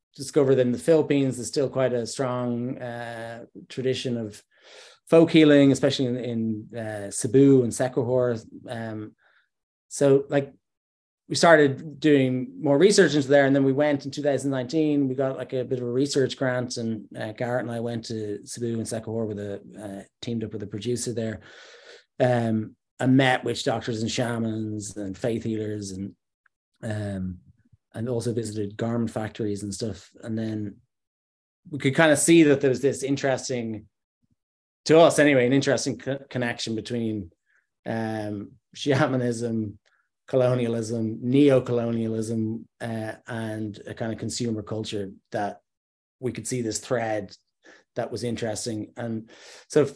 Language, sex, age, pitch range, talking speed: English, male, 30-49, 110-135 Hz, 155 wpm